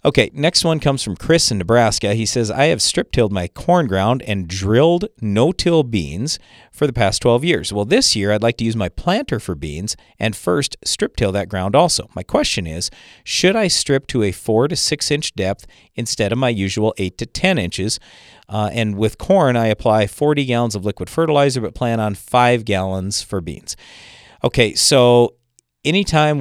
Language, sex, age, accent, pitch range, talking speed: English, male, 40-59, American, 100-125 Hz, 190 wpm